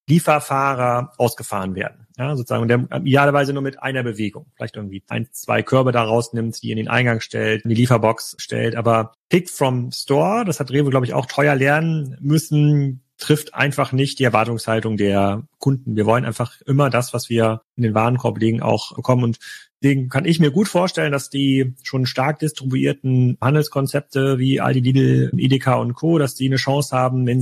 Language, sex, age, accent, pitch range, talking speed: German, male, 40-59, German, 120-145 Hz, 185 wpm